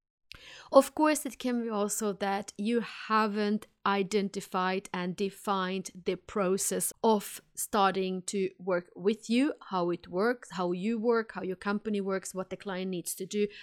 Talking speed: 160 wpm